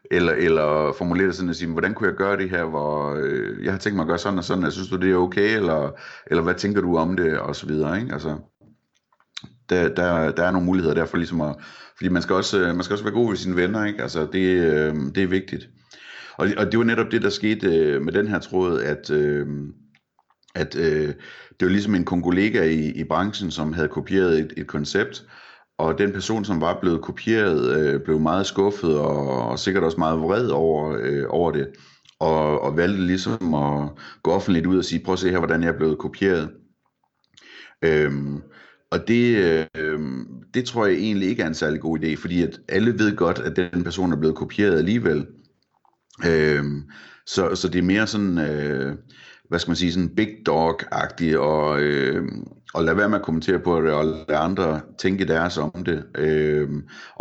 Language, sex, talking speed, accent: Danish, male, 210 wpm, native